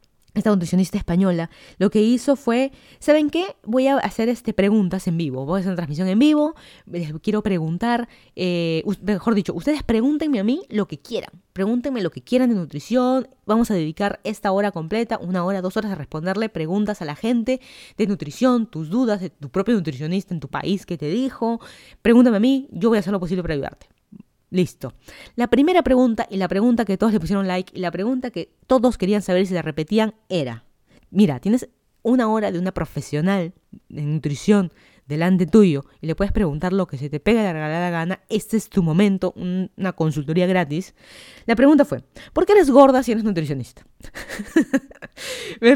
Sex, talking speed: female, 195 wpm